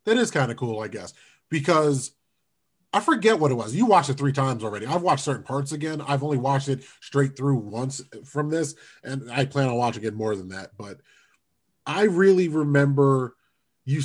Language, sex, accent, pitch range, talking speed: English, male, American, 130-175 Hz, 200 wpm